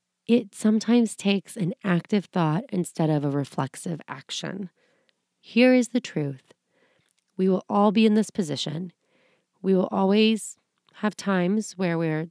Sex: female